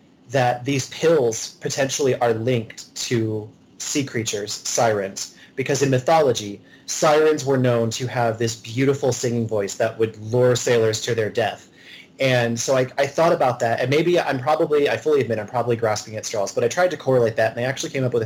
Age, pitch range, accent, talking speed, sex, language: 30-49, 115-135 Hz, American, 195 wpm, male, English